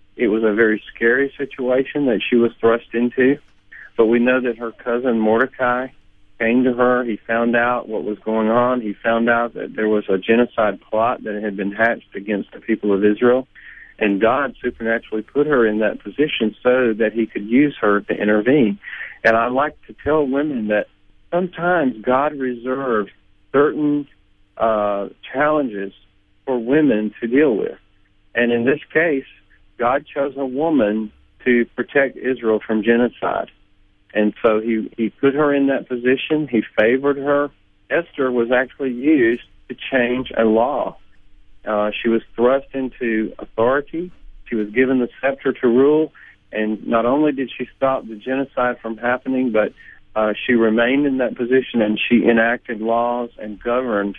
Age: 50-69